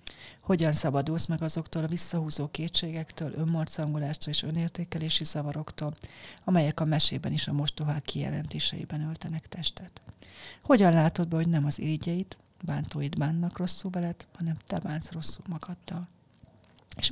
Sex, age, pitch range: female, 40-59, 150-175 Hz